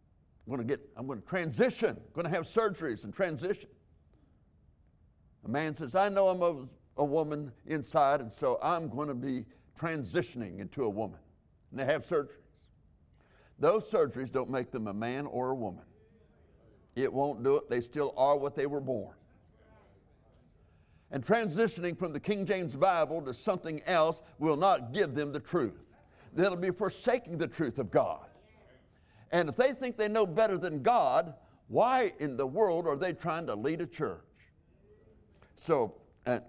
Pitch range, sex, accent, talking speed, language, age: 105-165 Hz, male, American, 170 wpm, English, 60-79